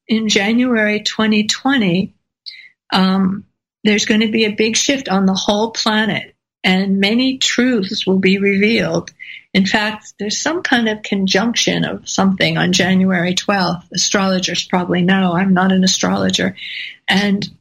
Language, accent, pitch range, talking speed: English, American, 185-220 Hz, 140 wpm